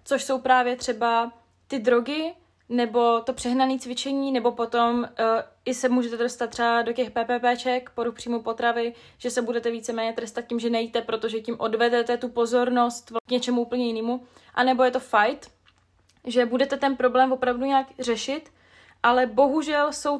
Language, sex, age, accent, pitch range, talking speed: Czech, female, 20-39, native, 230-255 Hz, 165 wpm